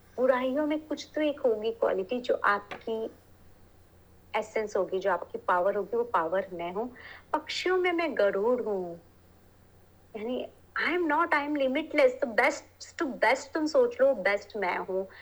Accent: native